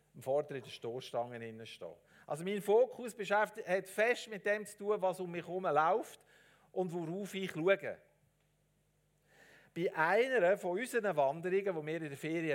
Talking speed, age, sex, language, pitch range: 165 wpm, 50-69, male, German, 150-205 Hz